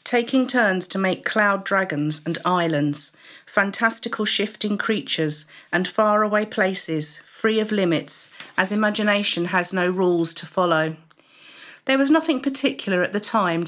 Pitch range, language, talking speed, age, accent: 180-215 Hz, English, 135 wpm, 40-59, British